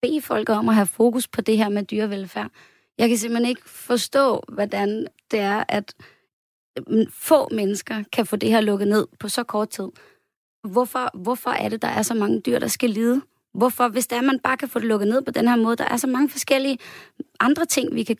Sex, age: female, 20-39